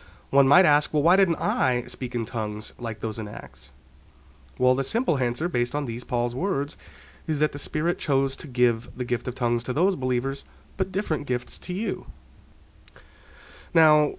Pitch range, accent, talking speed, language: 115-150 Hz, American, 180 wpm, English